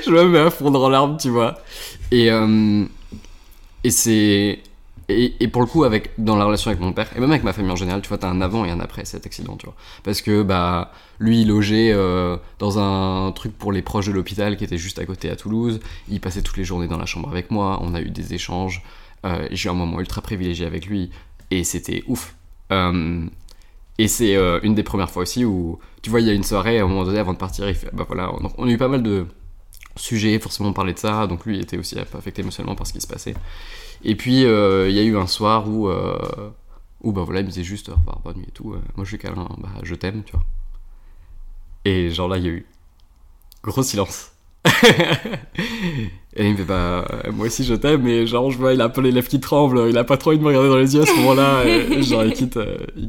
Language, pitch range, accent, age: French, 90-110 Hz, French, 20-39